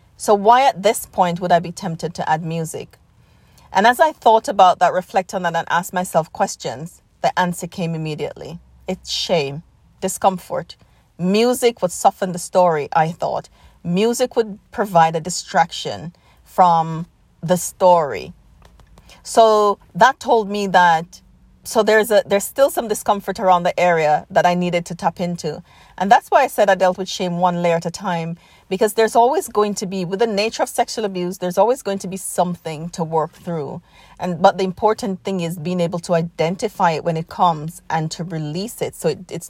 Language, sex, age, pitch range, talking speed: English, female, 40-59, 165-200 Hz, 185 wpm